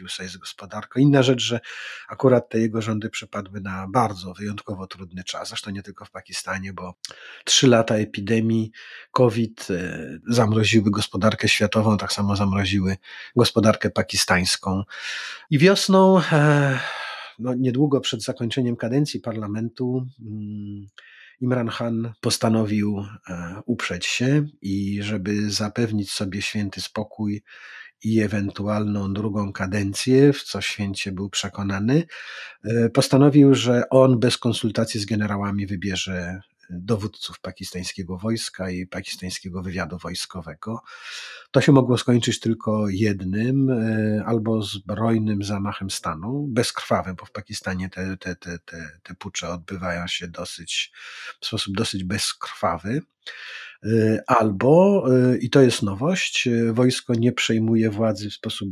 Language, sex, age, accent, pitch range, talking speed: Polish, male, 30-49, native, 100-120 Hz, 115 wpm